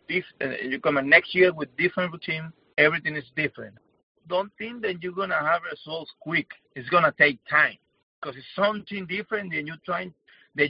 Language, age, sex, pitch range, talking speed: English, 50-69, male, 135-170 Hz, 175 wpm